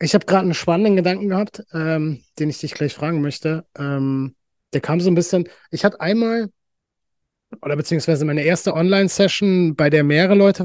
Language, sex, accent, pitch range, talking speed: German, male, German, 150-180 Hz, 180 wpm